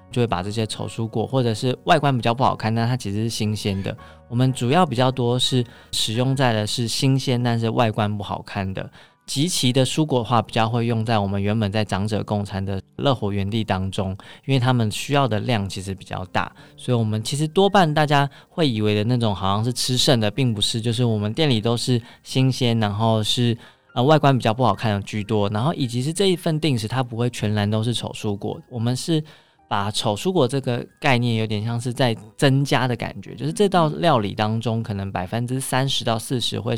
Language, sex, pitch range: Chinese, male, 105-130 Hz